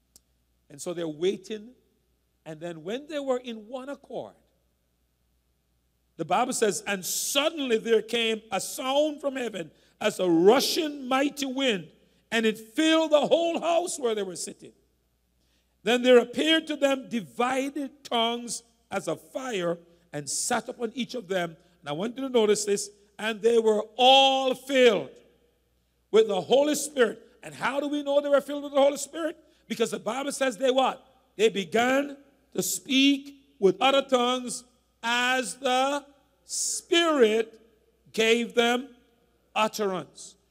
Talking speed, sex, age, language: 150 wpm, male, 50-69, English